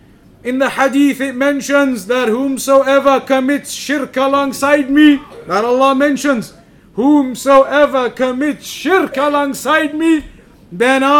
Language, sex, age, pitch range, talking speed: English, male, 50-69, 235-270 Hz, 105 wpm